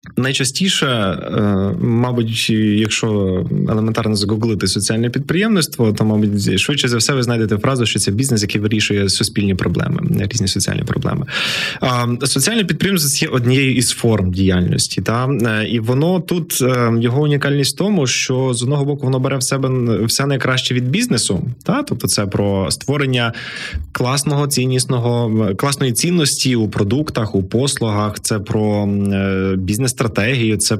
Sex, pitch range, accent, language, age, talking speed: male, 105-135 Hz, native, Ukrainian, 20-39, 135 wpm